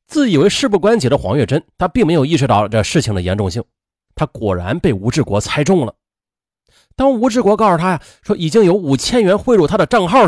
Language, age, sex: Chinese, 30-49, male